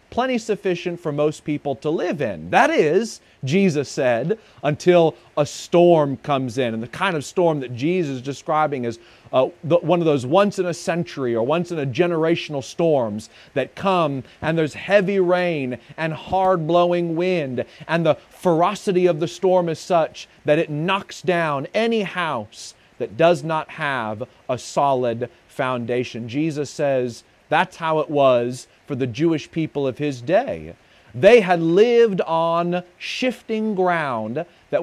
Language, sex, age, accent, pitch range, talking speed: English, male, 30-49, American, 140-180 Hz, 150 wpm